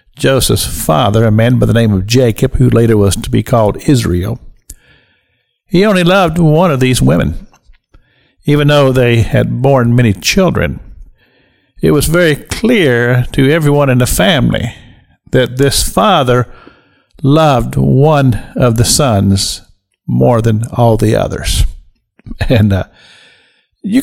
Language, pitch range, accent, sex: English, 115-160 Hz, American, male